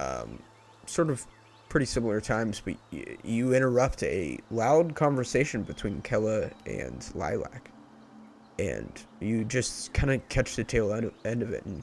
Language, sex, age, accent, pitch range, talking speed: English, male, 30-49, American, 85-135 Hz, 145 wpm